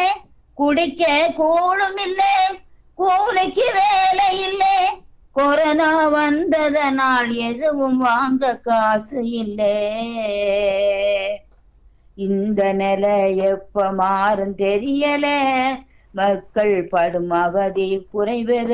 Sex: female